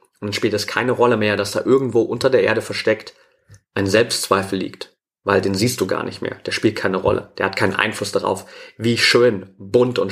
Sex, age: male, 30-49